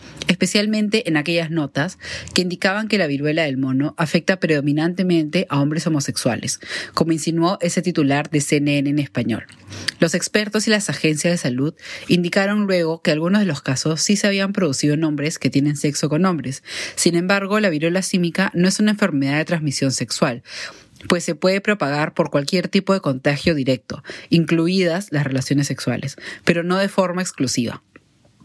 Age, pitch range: 30-49, 140-180 Hz